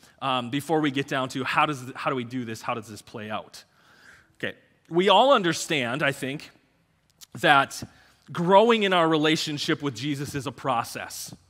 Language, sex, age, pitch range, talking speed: English, male, 30-49, 135-190 Hz, 175 wpm